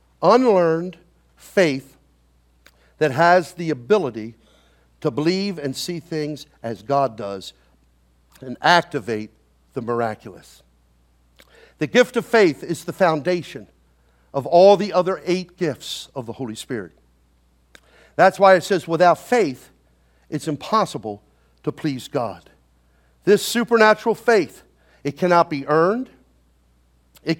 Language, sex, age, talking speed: English, male, 50-69, 120 wpm